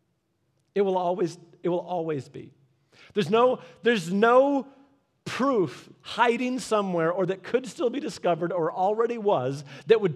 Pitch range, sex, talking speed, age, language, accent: 165-200 Hz, male, 150 wpm, 40-59, English, American